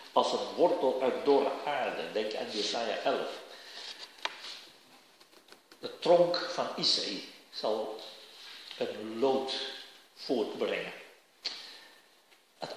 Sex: male